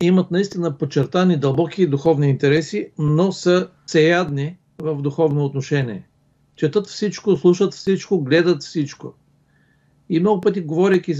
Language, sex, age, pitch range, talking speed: Bulgarian, male, 50-69, 145-185 Hz, 120 wpm